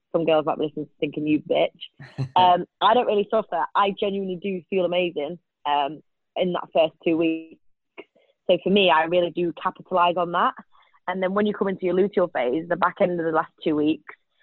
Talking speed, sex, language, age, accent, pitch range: 210 wpm, female, English, 20-39, British, 165-205 Hz